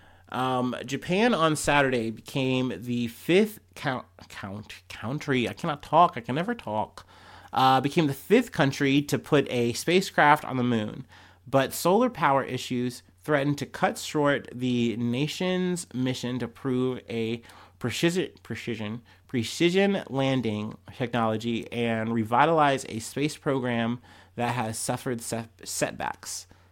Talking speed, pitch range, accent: 130 wpm, 115-145 Hz, American